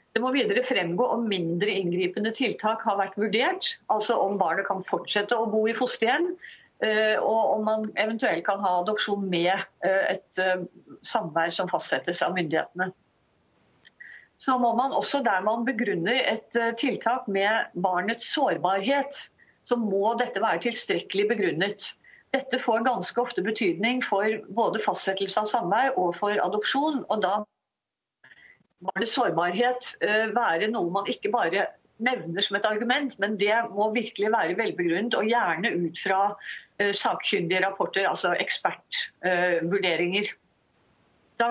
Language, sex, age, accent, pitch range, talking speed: Danish, female, 50-69, Swedish, 195-240 Hz, 135 wpm